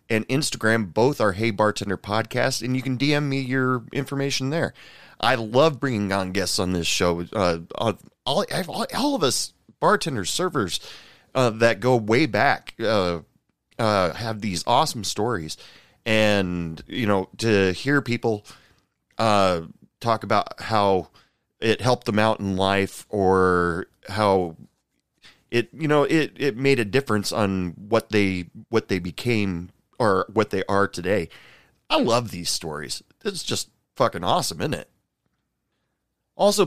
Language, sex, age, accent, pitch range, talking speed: English, male, 30-49, American, 100-140 Hz, 145 wpm